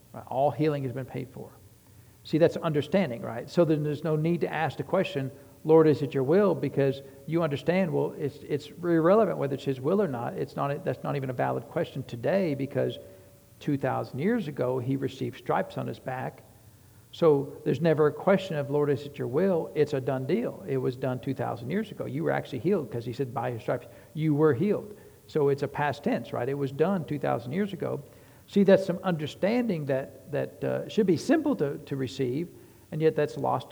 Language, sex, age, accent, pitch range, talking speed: English, male, 60-79, American, 130-165 Hz, 210 wpm